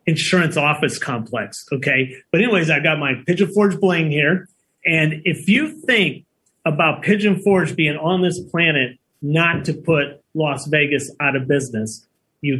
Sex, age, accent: male, 30-49, American